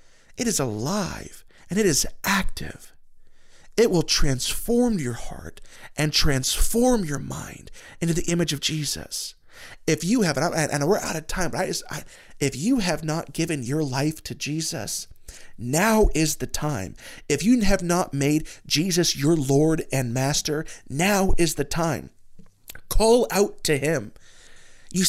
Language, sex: English, male